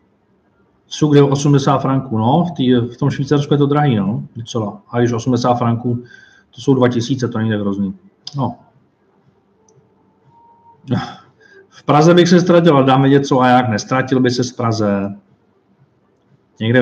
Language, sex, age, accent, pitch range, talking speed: Czech, male, 40-59, native, 115-145 Hz, 145 wpm